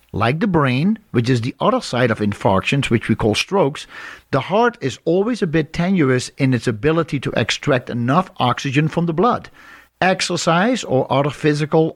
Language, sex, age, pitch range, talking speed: English, male, 50-69, 120-170 Hz, 175 wpm